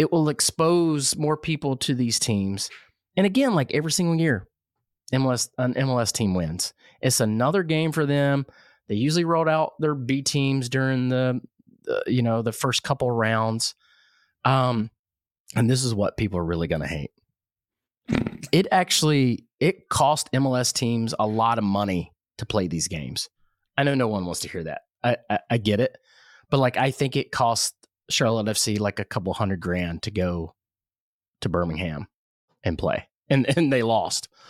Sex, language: male, English